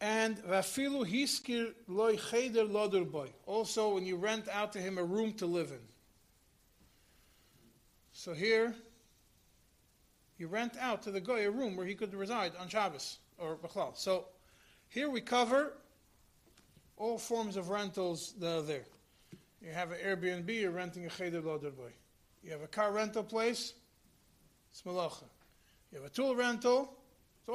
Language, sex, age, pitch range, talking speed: English, male, 40-59, 170-230 Hz, 140 wpm